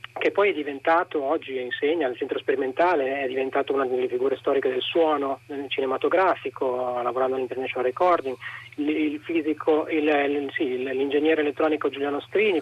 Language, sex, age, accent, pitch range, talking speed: Italian, male, 30-49, native, 145-200 Hz, 155 wpm